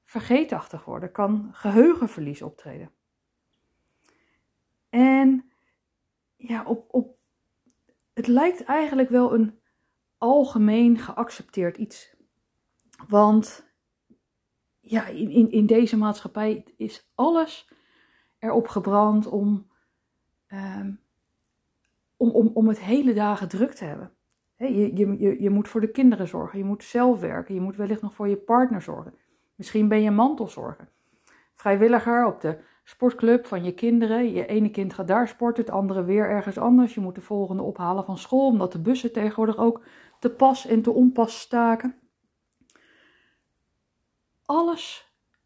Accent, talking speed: Dutch, 135 wpm